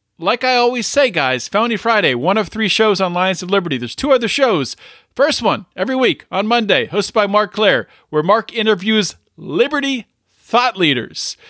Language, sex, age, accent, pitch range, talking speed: English, male, 40-59, American, 165-235 Hz, 175 wpm